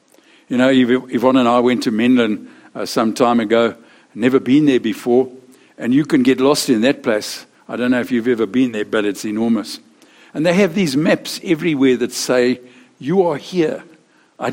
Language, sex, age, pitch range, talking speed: English, male, 60-79, 120-175 Hz, 195 wpm